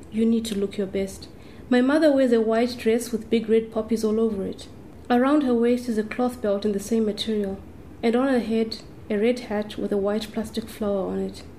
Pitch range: 205-240 Hz